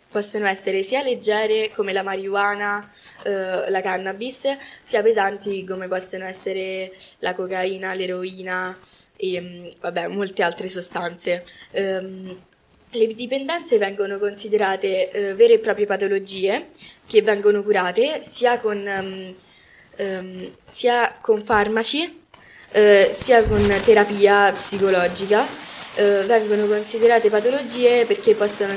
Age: 10-29